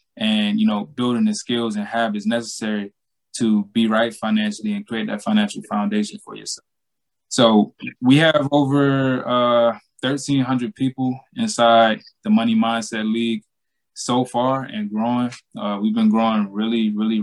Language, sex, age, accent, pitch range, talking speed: English, male, 20-39, American, 110-150 Hz, 145 wpm